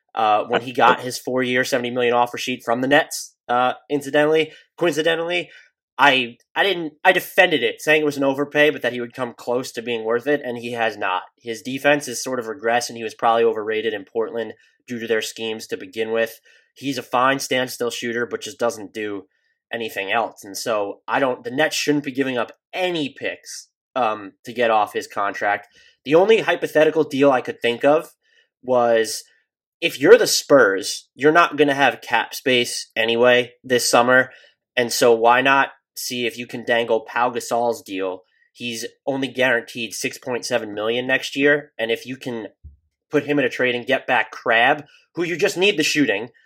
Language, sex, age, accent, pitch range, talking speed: English, male, 20-39, American, 120-145 Hz, 195 wpm